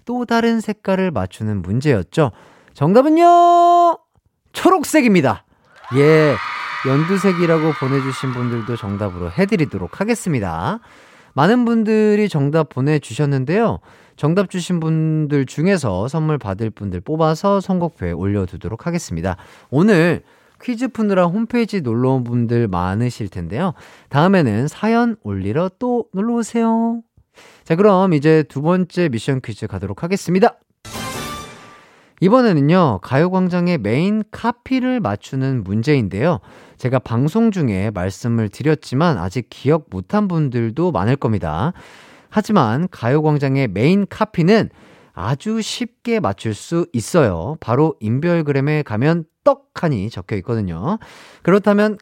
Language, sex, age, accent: Korean, male, 30-49, native